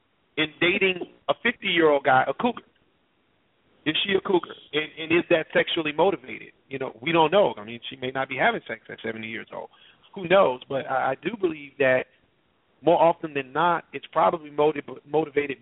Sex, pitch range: male, 130-160 Hz